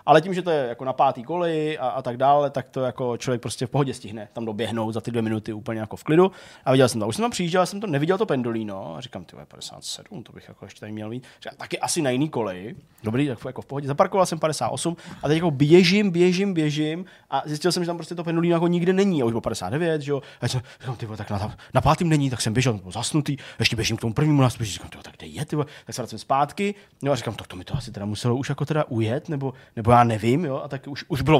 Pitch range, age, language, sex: 120-165 Hz, 20-39, Czech, male